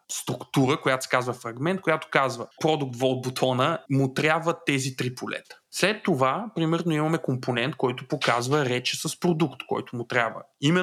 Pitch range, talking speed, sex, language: 130-170 Hz, 160 wpm, male, Bulgarian